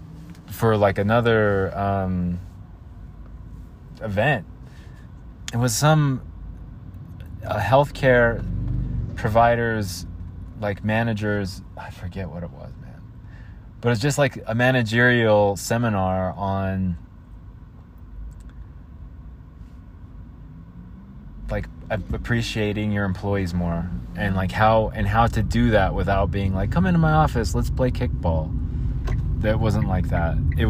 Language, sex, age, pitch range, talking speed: English, male, 20-39, 90-120 Hz, 110 wpm